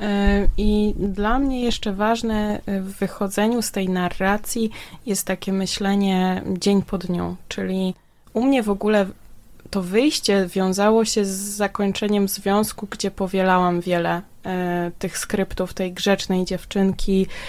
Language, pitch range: Polish, 185-215 Hz